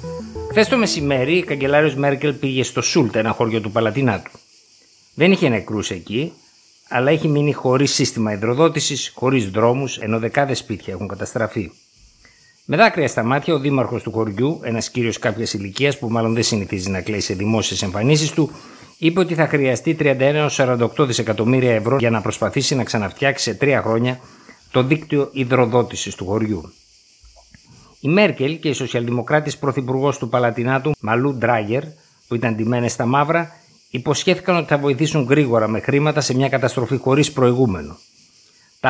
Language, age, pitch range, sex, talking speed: Greek, 50-69, 115-145 Hz, male, 155 wpm